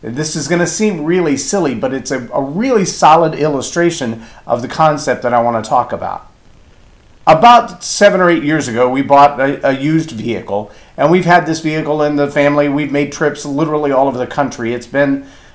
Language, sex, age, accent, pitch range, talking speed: English, male, 50-69, American, 130-170 Hz, 205 wpm